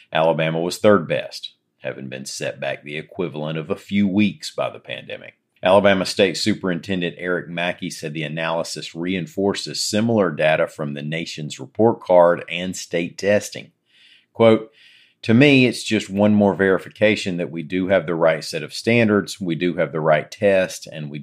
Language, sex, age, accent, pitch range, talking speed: English, male, 40-59, American, 80-100 Hz, 170 wpm